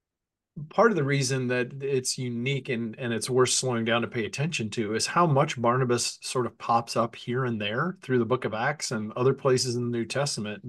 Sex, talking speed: male, 225 wpm